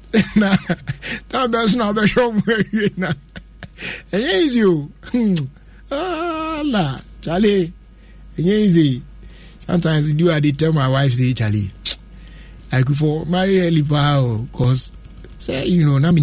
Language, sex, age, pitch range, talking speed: English, male, 60-79, 140-195 Hz, 130 wpm